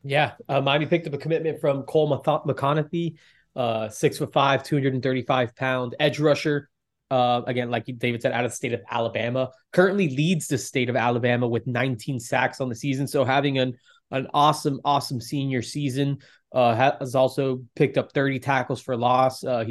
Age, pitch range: 20-39, 120-140 Hz